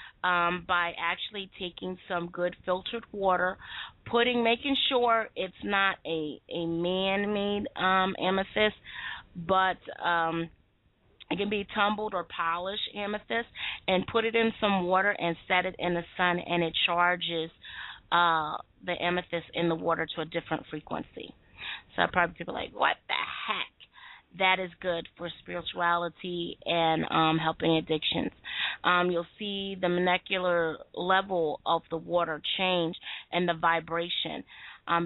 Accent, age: American, 20-39